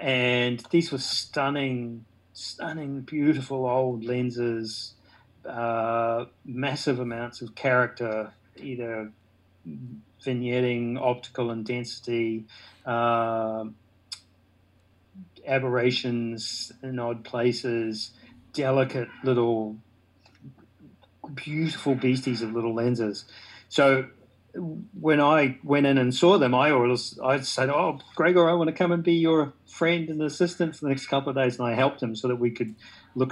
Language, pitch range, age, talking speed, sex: English, 110-130 Hz, 40-59, 120 wpm, male